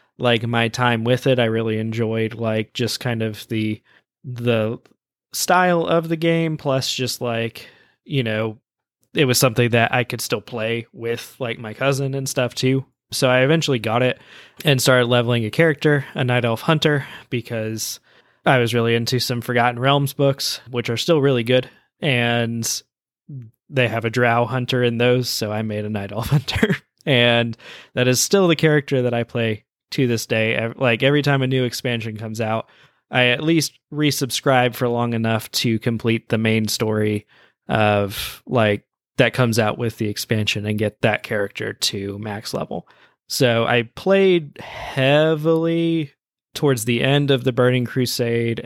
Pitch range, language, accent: 115-135 Hz, English, American